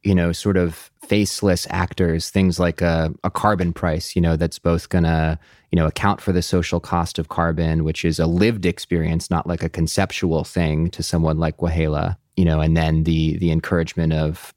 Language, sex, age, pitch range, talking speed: English, male, 20-39, 80-95 Hz, 200 wpm